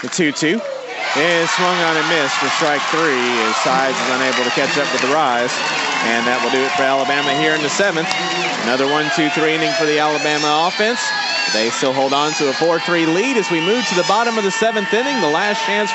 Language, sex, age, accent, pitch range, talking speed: English, male, 30-49, American, 145-185 Hz, 220 wpm